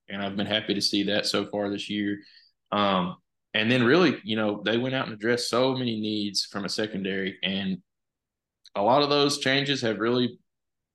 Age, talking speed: 20-39, 195 wpm